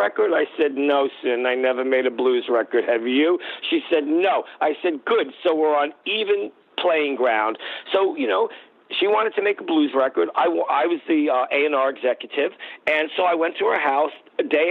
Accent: American